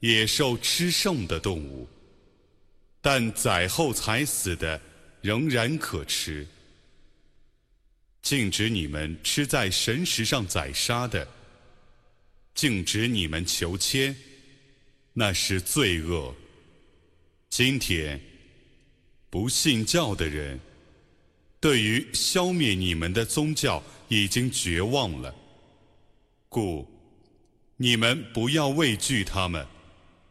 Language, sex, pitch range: Arabic, male, 85-135 Hz